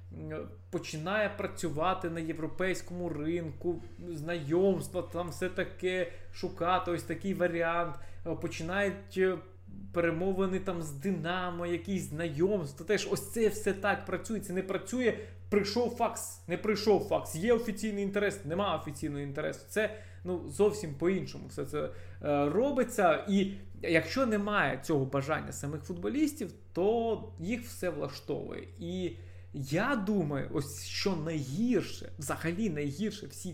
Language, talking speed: Ukrainian, 120 wpm